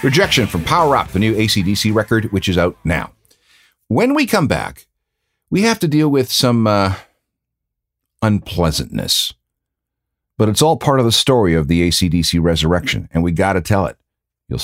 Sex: male